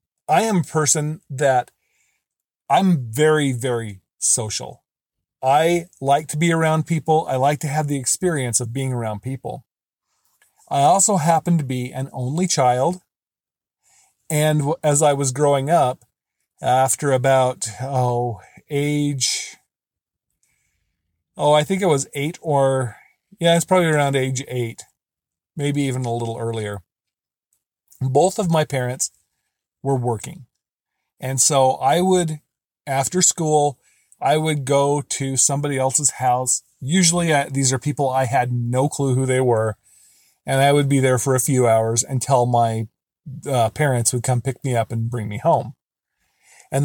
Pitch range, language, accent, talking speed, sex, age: 125-155 Hz, English, American, 145 wpm, male, 40-59